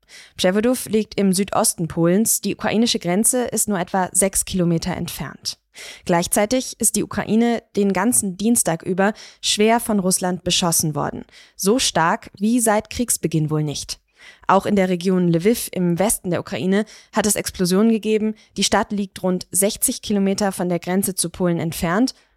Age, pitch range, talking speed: 20-39, 175-210 Hz, 160 wpm